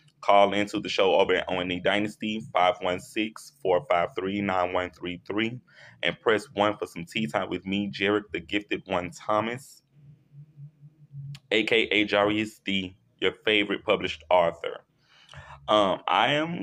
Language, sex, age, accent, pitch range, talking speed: English, male, 20-39, American, 95-130 Hz, 125 wpm